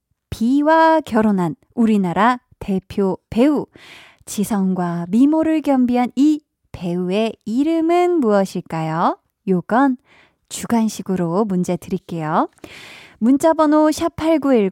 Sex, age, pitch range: female, 20-39, 190-275 Hz